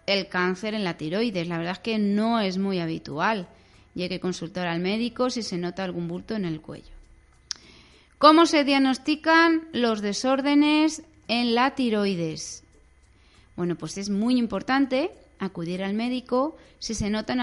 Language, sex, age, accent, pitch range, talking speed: Spanish, female, 30-49, Spanish, 175-230 Hz, 160 wpm